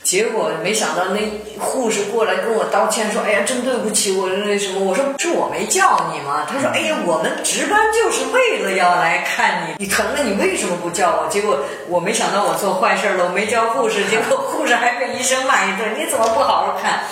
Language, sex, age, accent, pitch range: Chinese, female, 30-49, native, 180-260 Hz